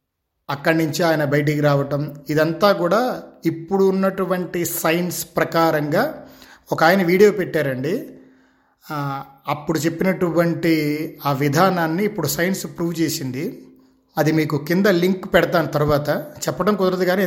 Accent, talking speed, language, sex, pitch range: native, 110 wpm, Telugu, male, 155-195 Hz